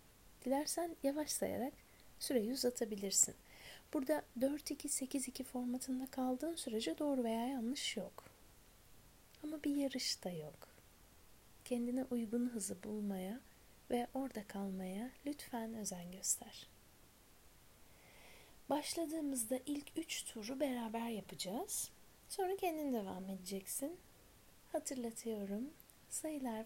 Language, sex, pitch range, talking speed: Turkish, female, 210-280 Hz, 90 wpm